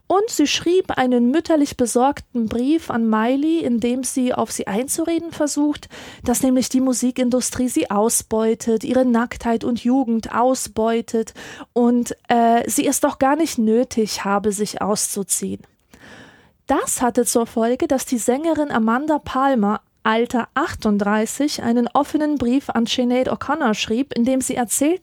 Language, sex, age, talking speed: German, female, 20-39, 145 wpm